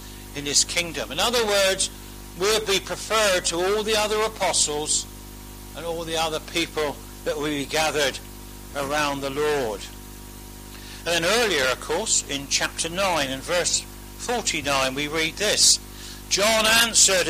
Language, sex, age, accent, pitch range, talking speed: English, male, 60-79, British, 120-190 Hz, 140 wpm